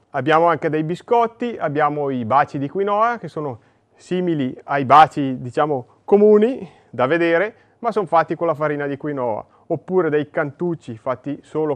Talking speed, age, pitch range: 160 wpm, 30-49, 150-195 Hz